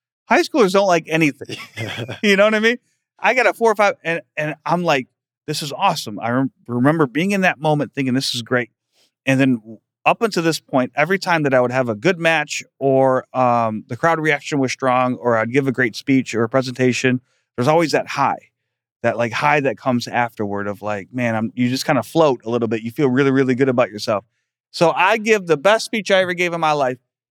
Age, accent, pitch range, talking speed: 30-49, American, 130-185 Hz, 235 wpm